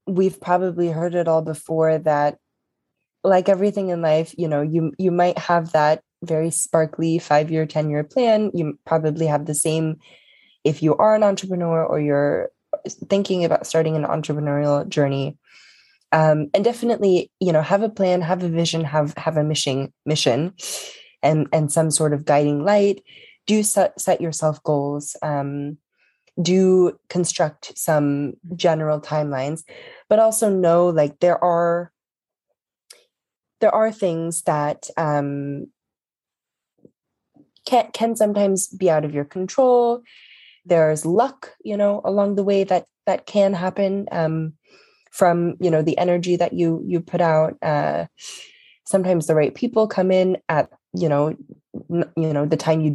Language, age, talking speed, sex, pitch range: English, 10-29, 145 wpm, female, 155-195 Hz